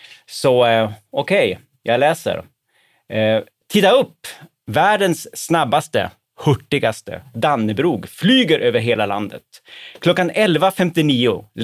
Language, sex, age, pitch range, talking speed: Swedish, male, 30-49, 115-170 Hz, 90 wpm